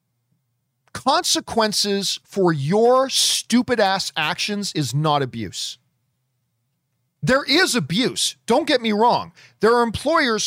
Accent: American